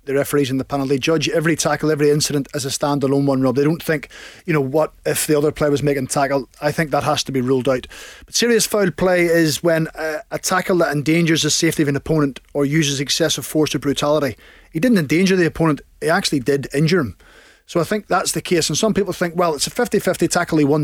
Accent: British